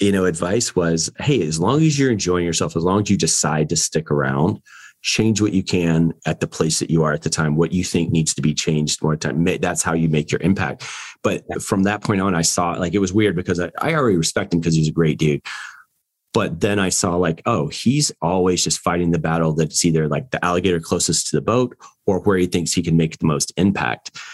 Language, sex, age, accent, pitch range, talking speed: English, male, 30-49, American, 80-95 Hz, 245 wpm